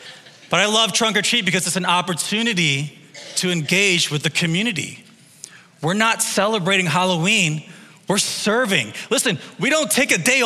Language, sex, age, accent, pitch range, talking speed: English, male, 20-39, American, 185-250 Hz, 155 wpm